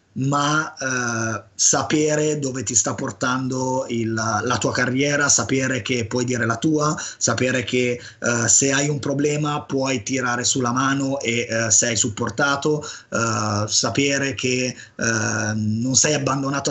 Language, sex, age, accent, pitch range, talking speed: Italian, male, 20-39, native, 120-150 Hz, 135 wpm